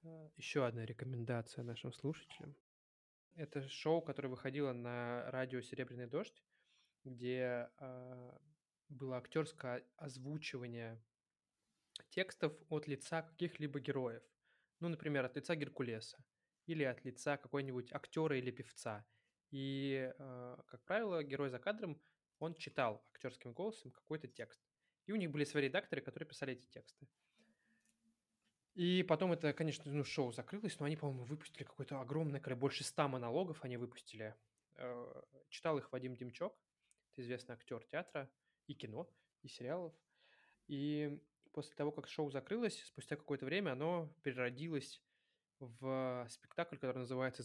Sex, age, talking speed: male, 20-39, 130 wpm